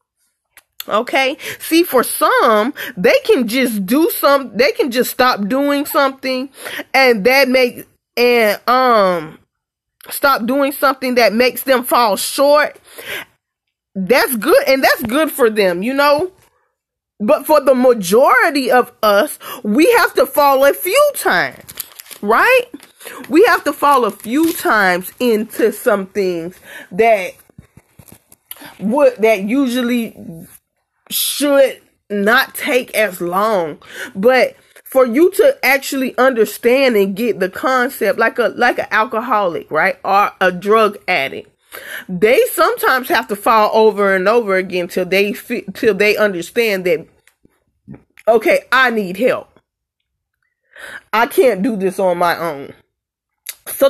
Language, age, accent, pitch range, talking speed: English, 20-39, American, 215-290 Hz, 130 wpm